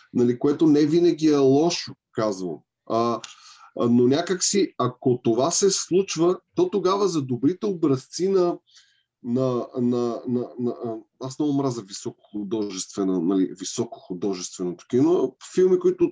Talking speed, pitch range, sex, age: 140 wpm, 120-160 Hz, male, 20-39